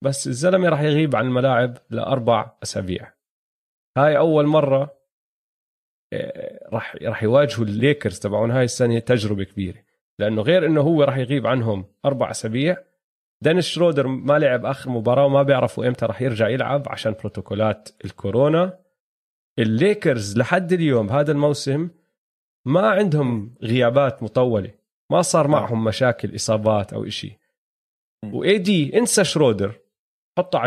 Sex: male